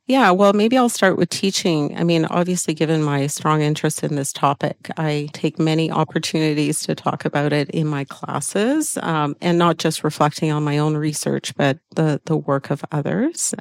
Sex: female